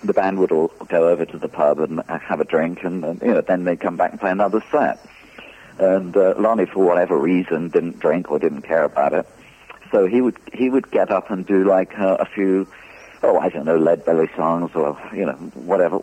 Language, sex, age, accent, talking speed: English, male, 50-69, British, 240 wpm